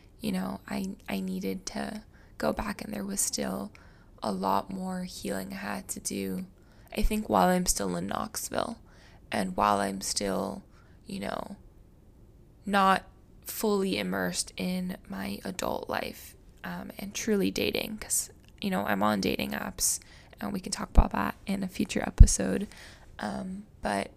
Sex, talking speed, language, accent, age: female, 155 wpm, English, American, 10-29